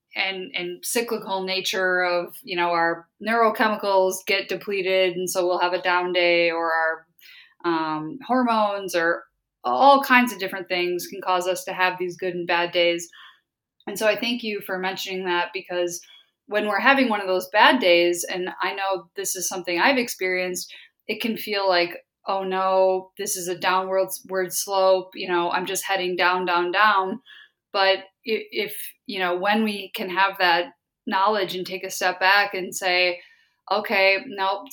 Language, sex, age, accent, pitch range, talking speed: English, female, 20-39, American, 180-200 Hz, 175 wpm